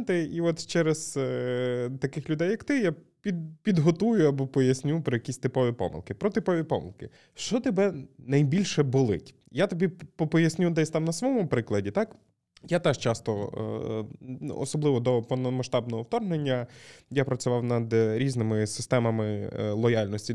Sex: male